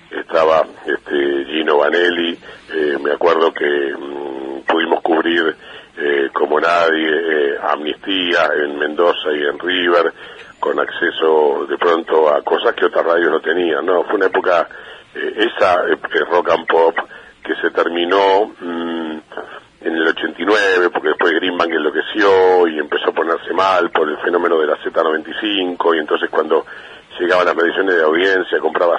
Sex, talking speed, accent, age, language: male, 155 wpm, Argentinian, 50-69, Spanish